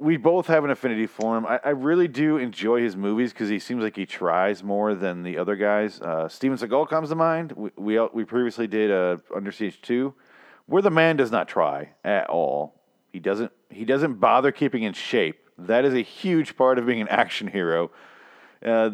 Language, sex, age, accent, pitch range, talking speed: English, male, 40-59, American, 105-135 Hz, 215 wpm